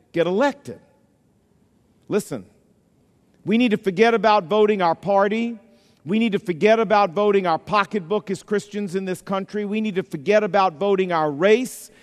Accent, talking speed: American, 160 wpm